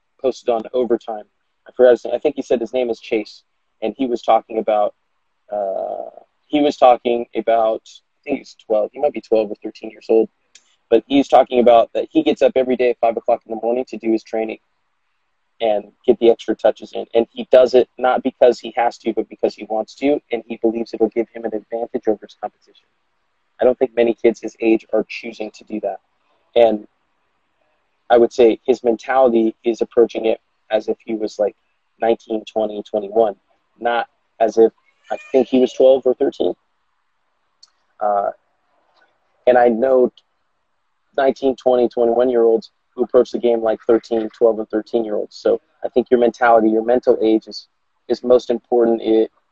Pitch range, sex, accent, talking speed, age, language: 110-125 Hz, male, American, 185 wpm, 20-39, English